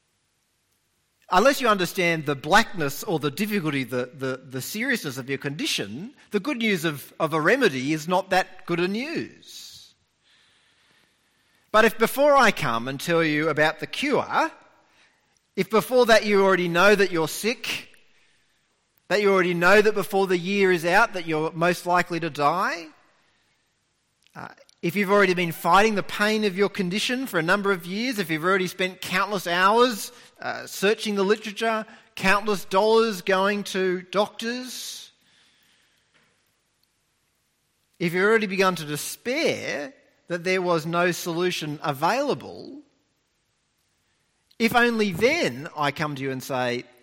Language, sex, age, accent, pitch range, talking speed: English, male, 40-59, Australian, 160-215 Hz, 145 wpm